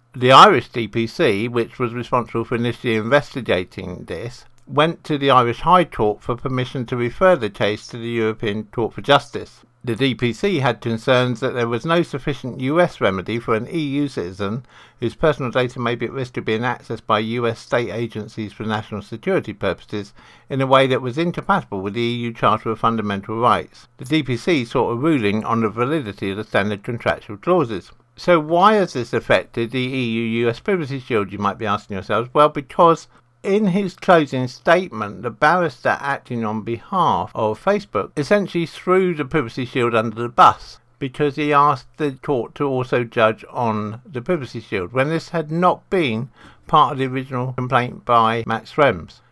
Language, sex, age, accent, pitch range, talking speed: English, male, 60-79, British, 115-145 Hz, 180 wpm